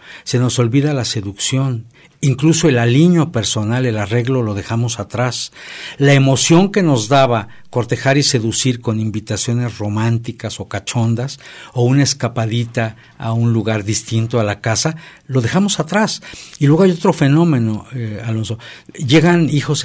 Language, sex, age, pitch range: Spanish, male, 60-79, 115-155 Hz